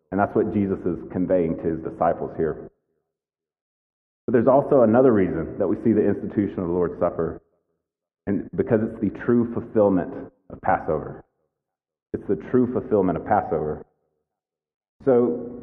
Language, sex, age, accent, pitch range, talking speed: English, male, 40-59, American, 90-115 Hz, 150 wpm